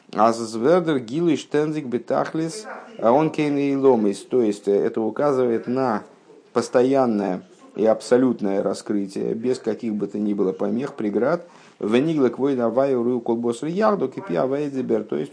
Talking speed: 75 wpm